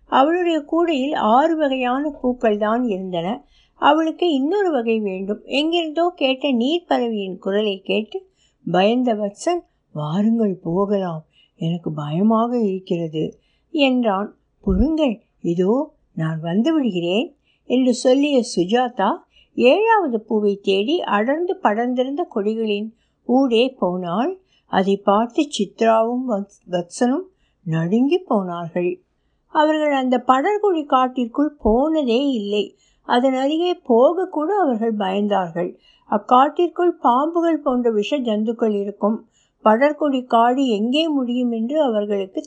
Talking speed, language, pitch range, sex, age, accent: 95 wpm, Tamil, 205-295 Hz, female, 60-79, native